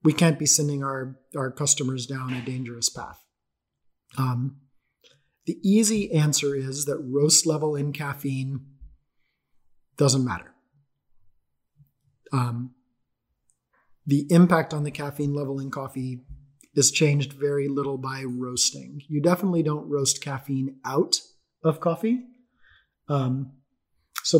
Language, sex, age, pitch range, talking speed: English, male, 30-49, 130-150 Hz, 120 wpm